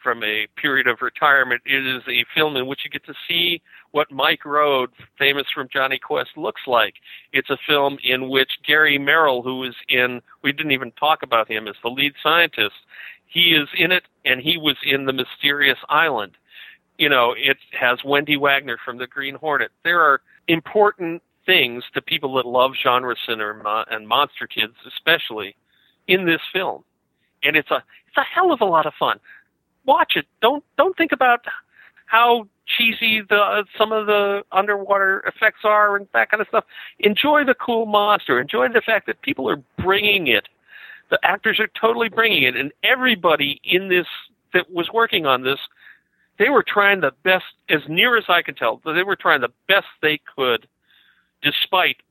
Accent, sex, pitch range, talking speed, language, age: American, male, 135-205 Hz, 185 wpm, English, 50-69